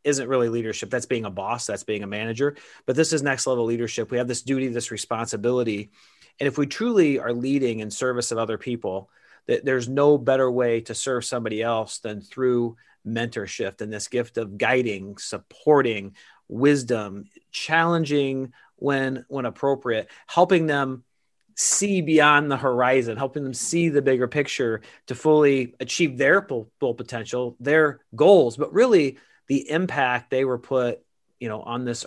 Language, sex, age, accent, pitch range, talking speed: English, male, 30-49, American, 120-150 Hz, 165 wpm